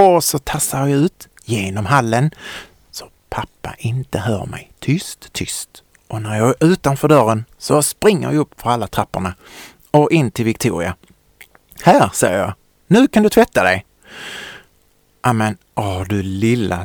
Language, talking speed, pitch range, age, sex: Swedish, 150 wpm, 110-155 Hz, 30-49, male